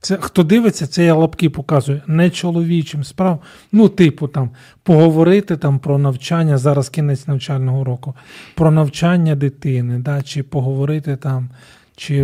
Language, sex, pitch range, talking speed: Ukrainian, male, 140-165 Hz, 140 wpm